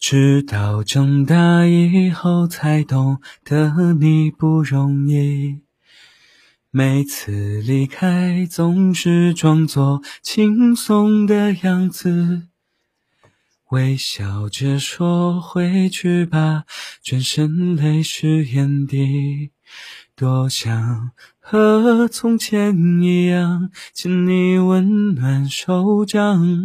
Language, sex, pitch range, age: Chinese, male, 155-255 Hz, 30-49